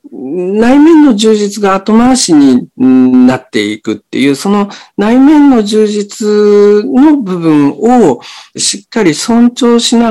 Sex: male